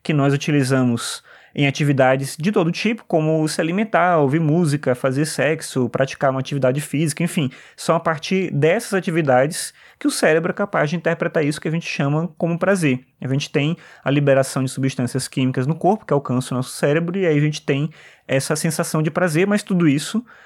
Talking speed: 195 wpm